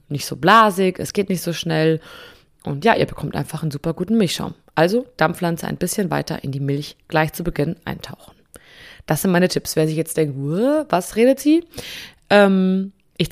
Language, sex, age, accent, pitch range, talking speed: German, female, 20-39, German, 150-185 Hz, 190 wpm